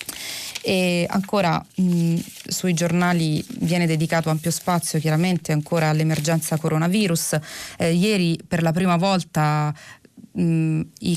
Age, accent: 30-49, native